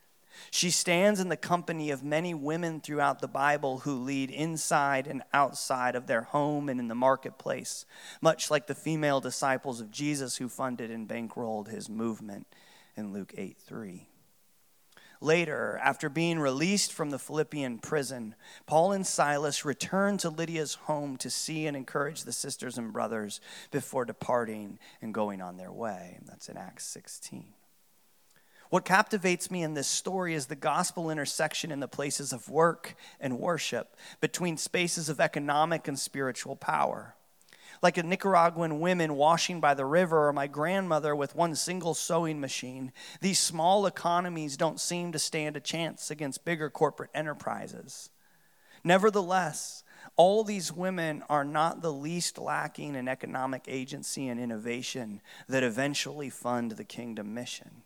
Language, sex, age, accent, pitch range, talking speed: English, male, 30-49, American, 130-170 Hz, 150 wpm